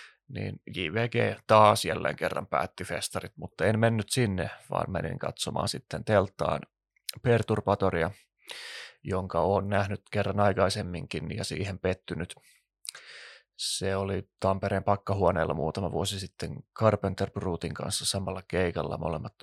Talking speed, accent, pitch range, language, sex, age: 115 wpm, native, 90-105 Hz, Finnish, male, 20-39